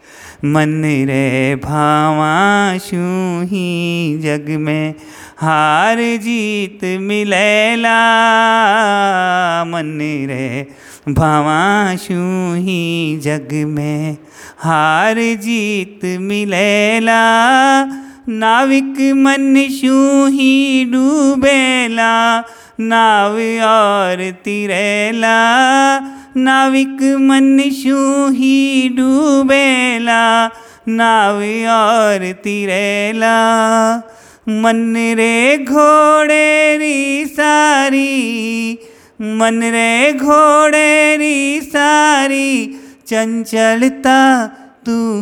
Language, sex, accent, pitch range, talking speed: Hindi, male, native, 185-260 Hz, 60 wpm